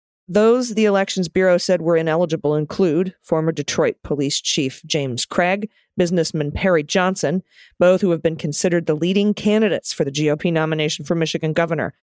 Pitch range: 155-190 Hz